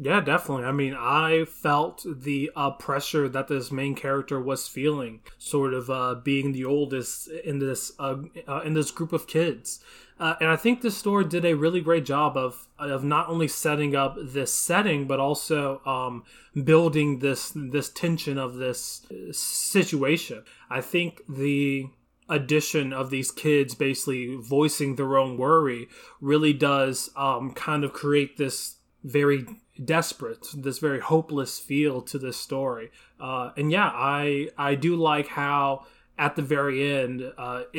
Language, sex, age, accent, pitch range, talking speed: English, male, 20-39, American, 135-155 Hz, 160 wpm